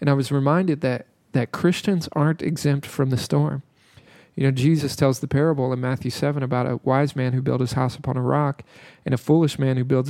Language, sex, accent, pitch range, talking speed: English, male, American, 130-150 Hz, 225 wpm